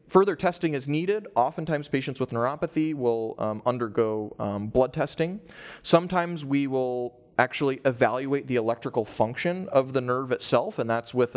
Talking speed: 155 wpm